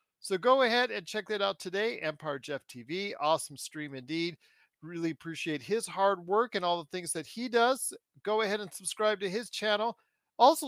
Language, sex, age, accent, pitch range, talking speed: English, male, 40-59, American, 165-240 Hz, 190 wpm